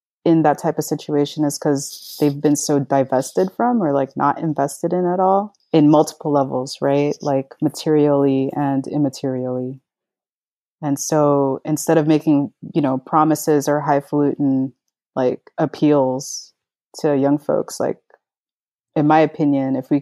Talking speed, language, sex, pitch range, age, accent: 145 wpm, English, female, 135-155 Hz, 30-49, American